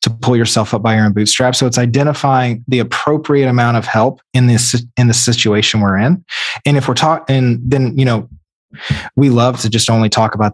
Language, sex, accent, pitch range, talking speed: English, male, American, 115-135 Hz, 210 wpm